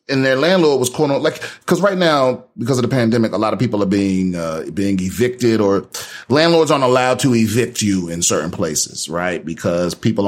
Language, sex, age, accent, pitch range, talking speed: English, male, 30-49, American, 115-155 Hz, 205 wpm